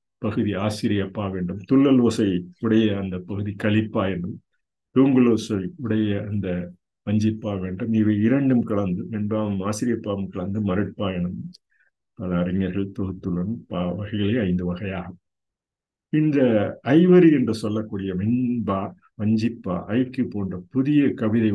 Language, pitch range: Tamil, 95-110 Hz